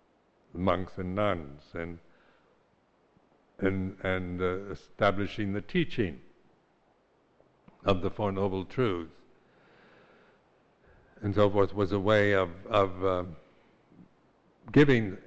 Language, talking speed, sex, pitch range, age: English, 100 wpm, male, 90-105 Hz, 60-79